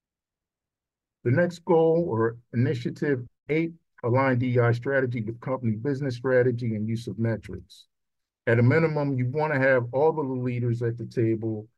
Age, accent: 50-69, American